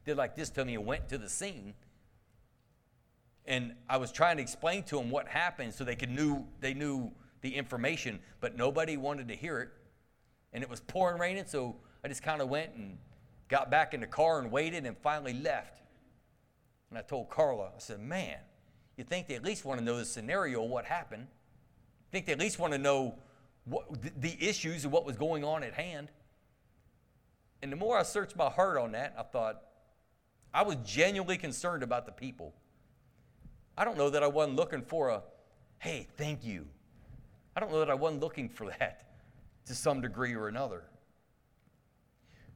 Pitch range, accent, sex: 120-165 Hz, American, male